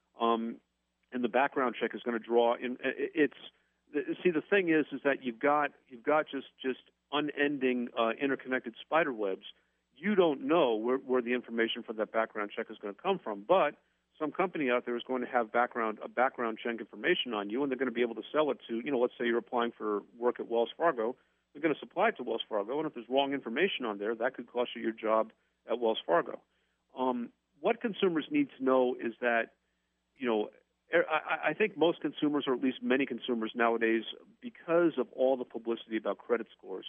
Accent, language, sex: American, English, male